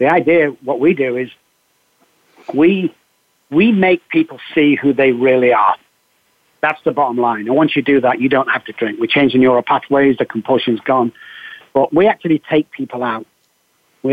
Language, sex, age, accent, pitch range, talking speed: English, male, 40-59, British, 130-155 Hz, 185 wpm